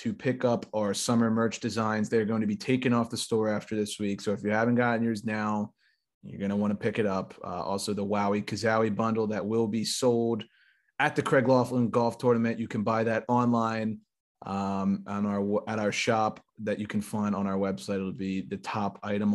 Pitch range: 100-120 Hz